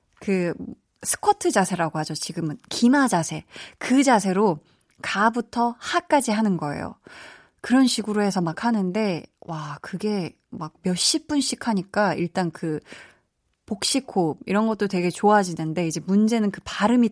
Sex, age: female, 20-39